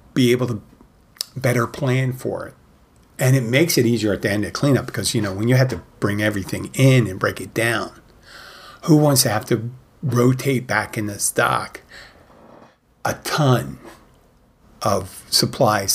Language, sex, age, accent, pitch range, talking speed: English, male, 50-69, American, 110-135 Hz, 170 wpm